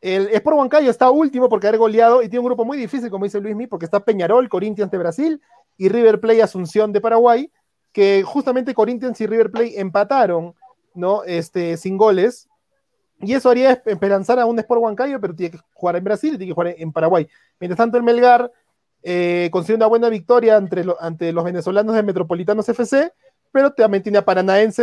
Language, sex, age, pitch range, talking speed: Spanish, male, 30-49, 185-245 Hz, 200 wpm